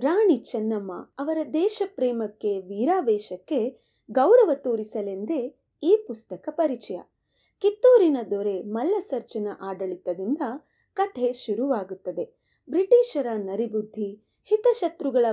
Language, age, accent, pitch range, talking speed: Kannada, 20-39, native, 205-330 Hz, 80 wpm